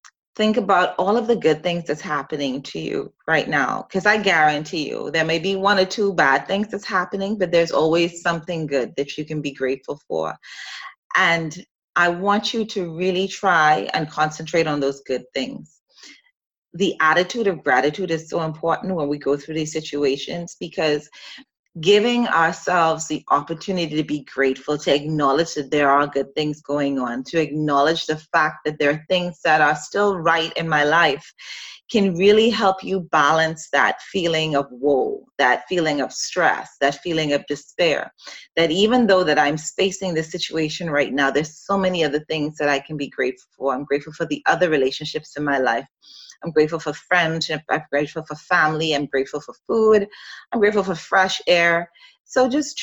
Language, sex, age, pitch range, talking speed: English, female, 30-49, 145-185 Hz, 185 wpm